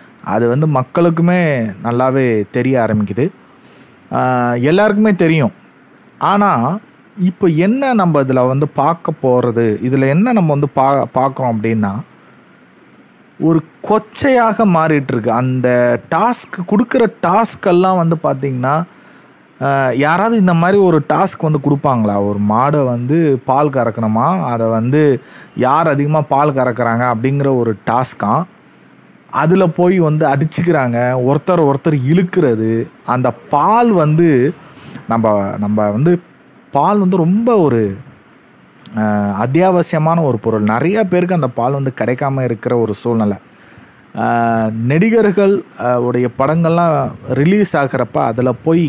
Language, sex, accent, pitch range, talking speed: Tamil, male, native, 125-170 Hz, 105 wpm